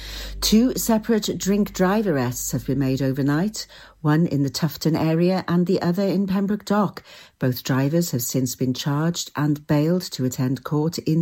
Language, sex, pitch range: English, female, 145-185 Hz